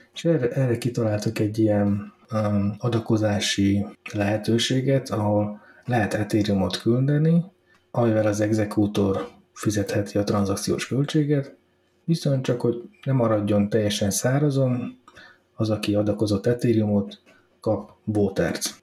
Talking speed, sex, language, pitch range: 105 wpm, male, Hungarian, 105-120 Hz